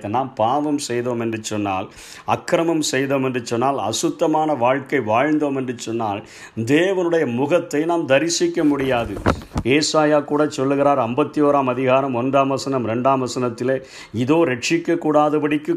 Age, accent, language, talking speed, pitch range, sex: 50-69, native, Tamil, 120 wpm, 120-150 Hz, male